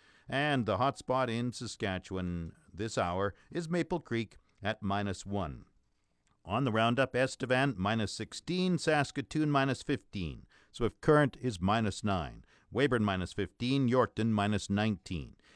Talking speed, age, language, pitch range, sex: 135 wpm, 50-69, English, 110-155 Hz, male